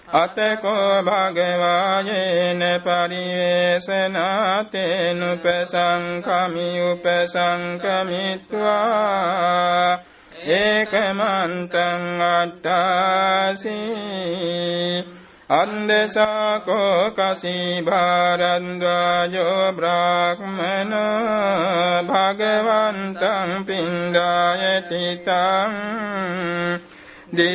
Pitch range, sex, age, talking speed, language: 175-195 Hz, male, 60-79, 40 wpm, Vietnamese